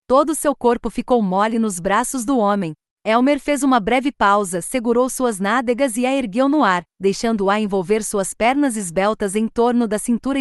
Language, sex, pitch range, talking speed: Portuguese, female, 215-270 Hz, 180 wpm